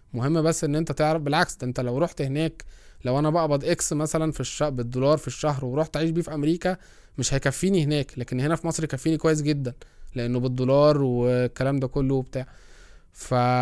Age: 20-39